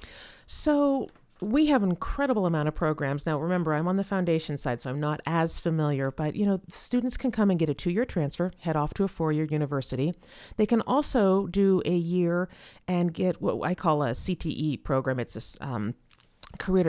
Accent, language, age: American, English, 40-59